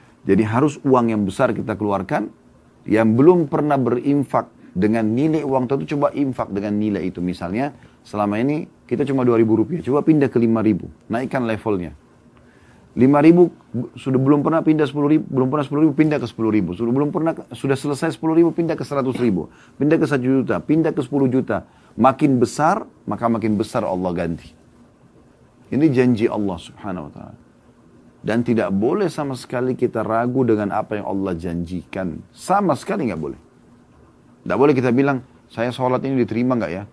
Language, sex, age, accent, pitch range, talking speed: Indonesian, male, 30-49, native, 110-145 Hz, 165 wpm